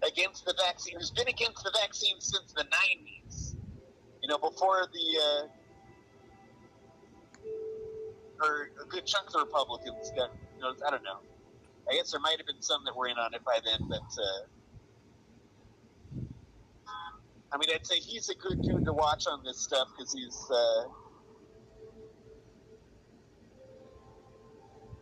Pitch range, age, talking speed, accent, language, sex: 125-180 Hz, 30-49, 145 wpm, American, English, male